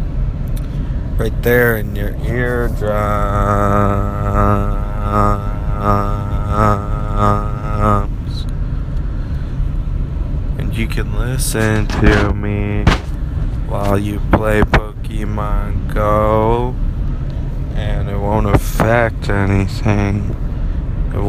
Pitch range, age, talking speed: 105-125 Hz, 20-39, 60 wpm